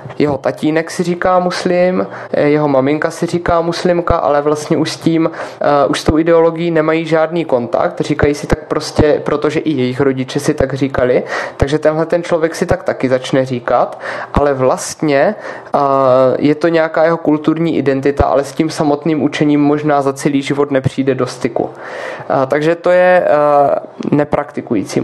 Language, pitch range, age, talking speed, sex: Czech, 140-165 Hz, 20-39, 160 wpm, male